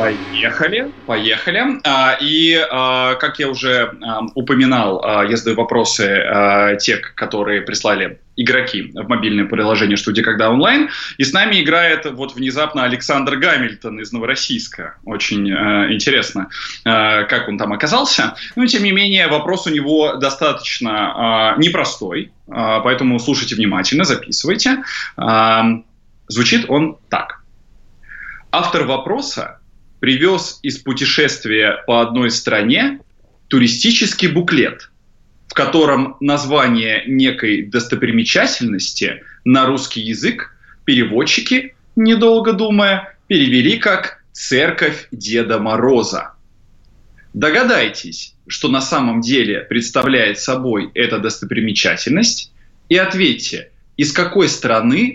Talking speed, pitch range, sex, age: 100 wpm, 115-180 Hz, male, 20-39